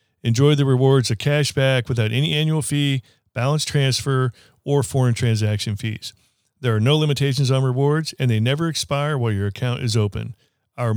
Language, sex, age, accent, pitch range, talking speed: English, male, 40-59, American, 110-130 Hz, 175 wpm